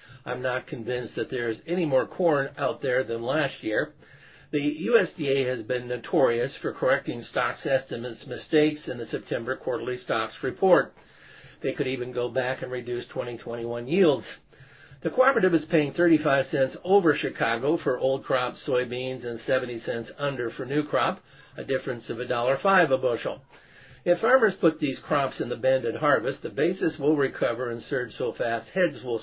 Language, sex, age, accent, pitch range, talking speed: English, male, 50-69, American, 125-155 Hz, 170 wpm